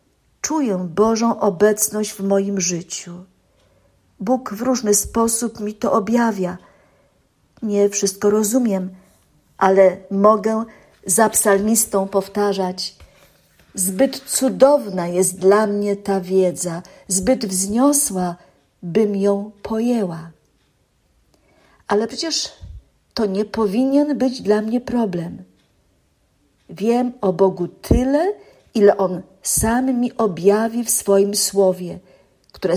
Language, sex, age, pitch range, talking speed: Polish, female, 50-69, 190-230 Hz, 100 wpm